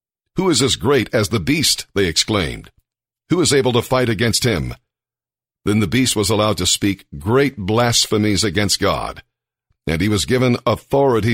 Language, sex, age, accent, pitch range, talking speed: English, male, 50-69, American, 100-120 Hz, 170 wpm